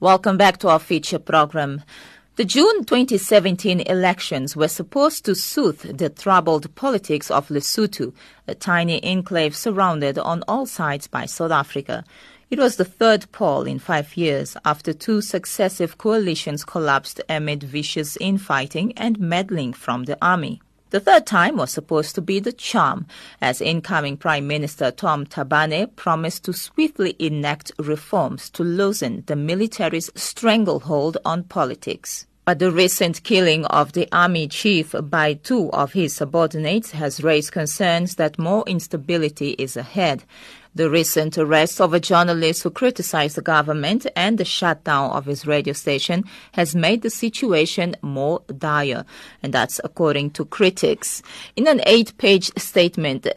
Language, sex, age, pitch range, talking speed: English, female, 40-59, 155-195 Hz, 145 wpm